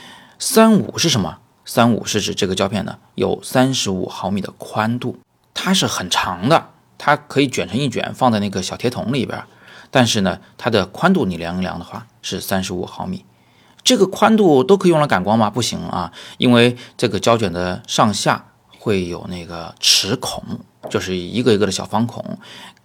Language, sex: Chinese, male